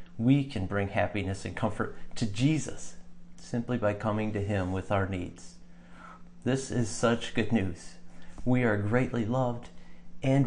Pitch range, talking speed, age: 90-120 Hz, 150 wpm, 40-59